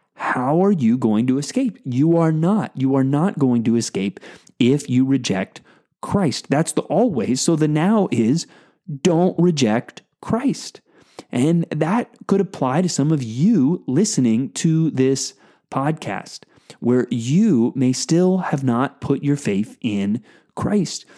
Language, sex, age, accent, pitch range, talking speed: English, male, 20-39, American, 130-170 Hz, 145 wpm